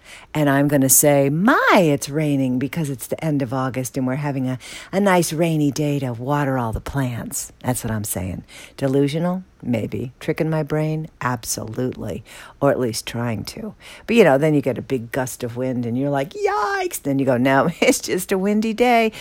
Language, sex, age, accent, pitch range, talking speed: English, female, 60-79, American, 115-150 Hz, 205 wpm